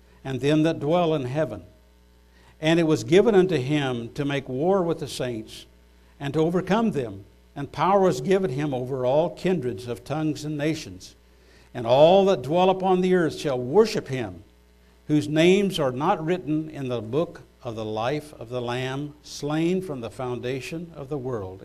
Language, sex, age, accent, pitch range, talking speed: English, male, 60-79, American, 100-155 Hz, 180 wpm